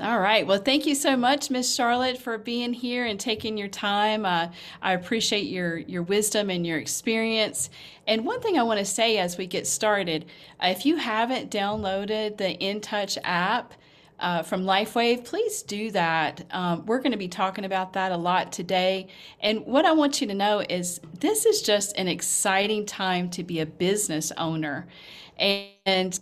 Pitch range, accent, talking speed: 180-225 Hz, American, 185 wpm